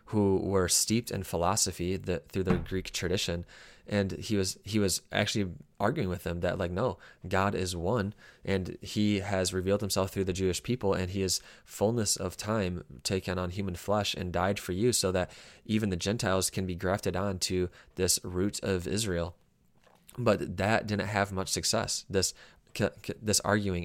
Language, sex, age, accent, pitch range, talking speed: English, male, 20-39, American, 90-100 Hz, 180 wpm